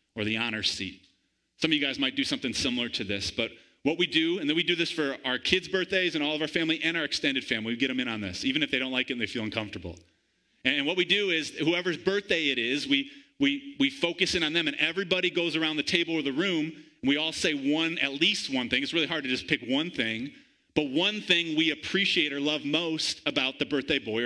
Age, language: 30-49, English